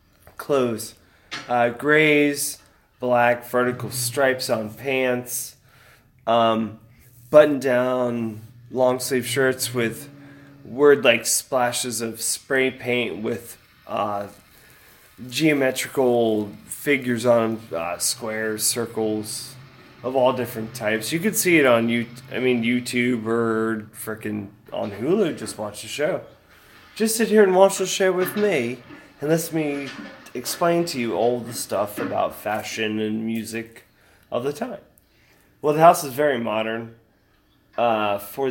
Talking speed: 125 wpm